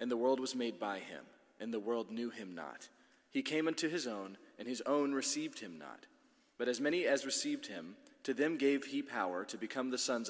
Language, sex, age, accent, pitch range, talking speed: English, male, 30-49, American, 110-145 Hz, 225 wpm